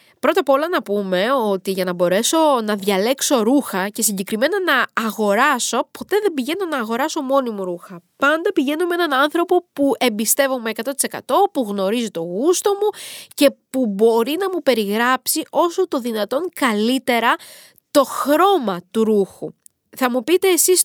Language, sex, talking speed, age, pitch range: Greek, female, 160 wpm, 20-39, 215-295 Hz